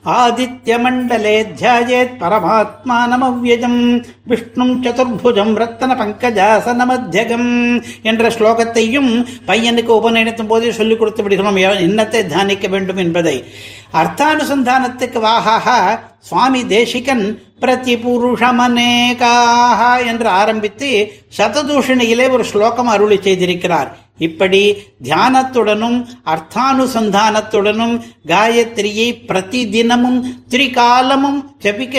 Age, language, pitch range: 60-79, Tamil, 210-245 Hz